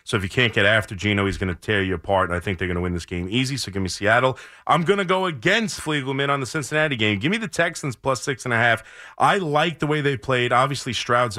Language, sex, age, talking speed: English, male, 30-49, 285 wpm